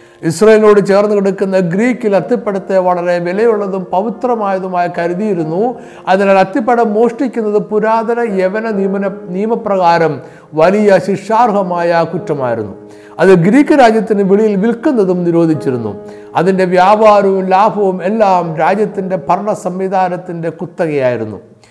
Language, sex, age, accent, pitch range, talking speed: Malayalam, male, 50-69, native, 175-230 Hz, 90 wpm